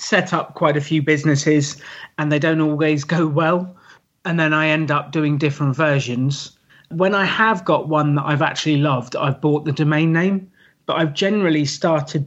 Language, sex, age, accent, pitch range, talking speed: English, male, 30-49, British, 150-180 Hz, 185 wpm